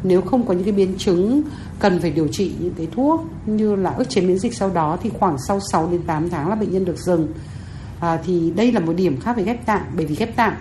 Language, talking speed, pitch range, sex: Vietnamese, 270 wpm, 160-215 Hz, female